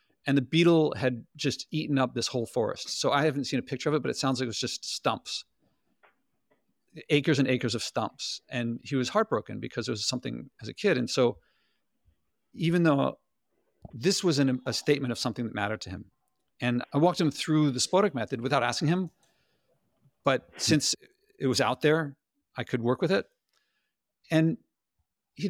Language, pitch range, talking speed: English, 130-165 Hz, 190 wpm